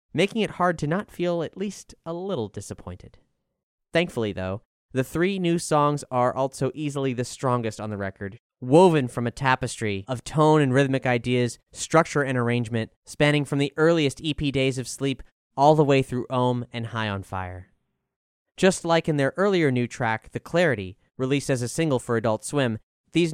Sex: male